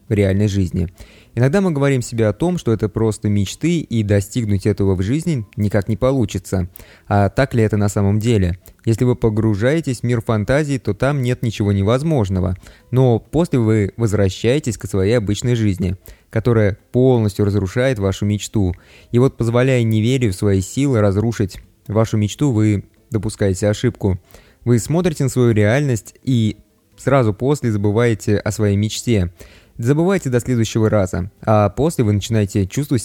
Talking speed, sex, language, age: 160 wpm, male, Russian, 20-39